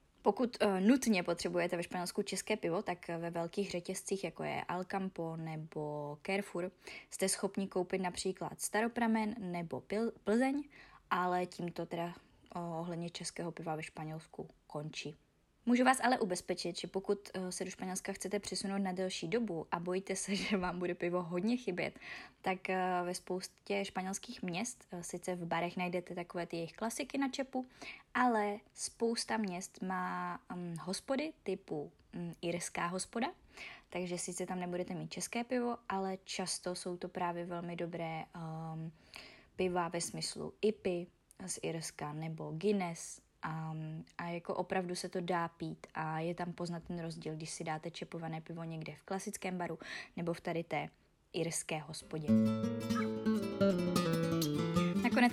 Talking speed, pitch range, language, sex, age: 145 wpm, 170-200 Hz, Czech, female, 20-39